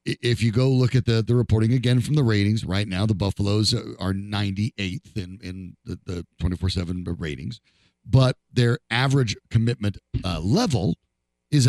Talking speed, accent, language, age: 160 wpm, American, English, 50-69